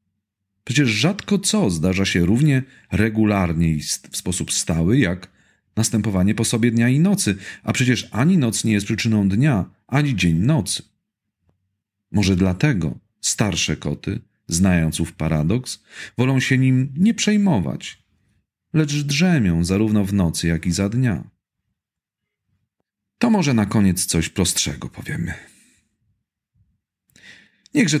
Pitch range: 95-130 Hz